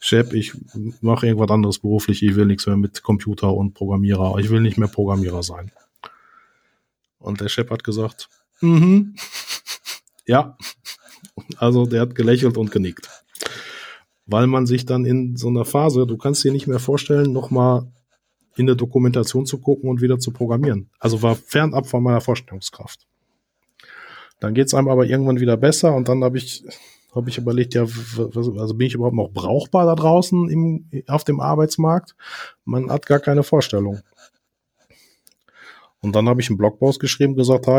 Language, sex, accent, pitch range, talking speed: German, male, German, 105-130 Hz, 170 wpm